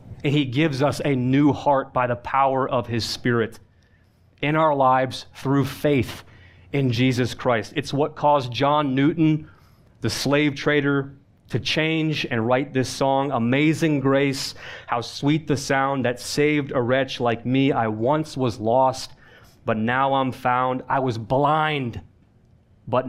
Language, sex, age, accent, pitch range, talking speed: English, male, 30-49, American, 115-145 Hz, 155 wpm